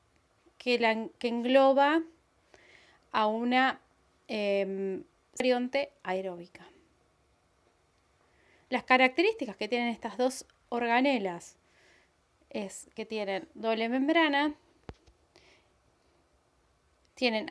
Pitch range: 200-275 Hz